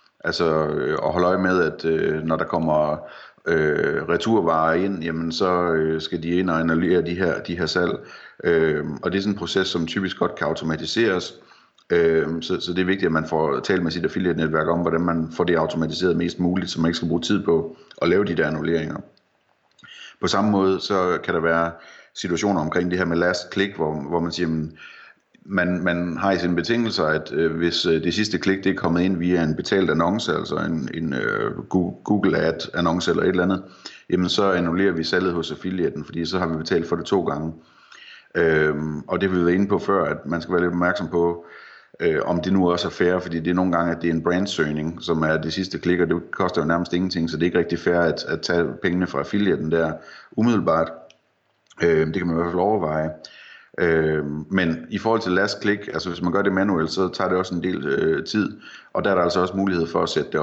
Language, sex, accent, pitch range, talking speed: Danish, male, native, 80-90 Hz, 230 wpm